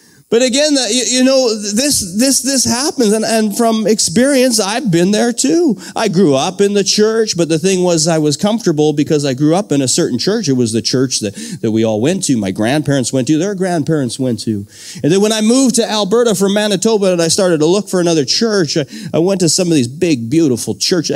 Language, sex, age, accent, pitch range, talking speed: English, male, 40-59, American, 150-230 Hz, 230 wpm